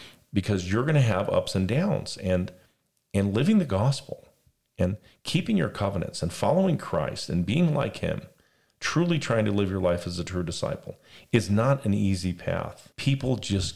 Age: 40-59